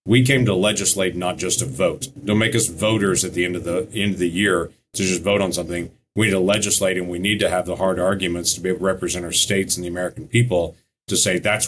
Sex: male